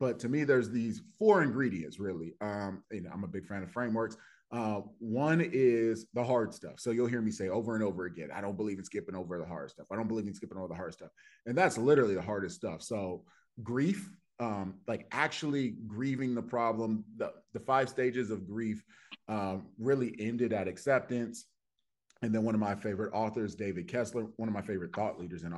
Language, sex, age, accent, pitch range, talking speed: English, male, 30-49, American, 95-115 Hz, 215 wpm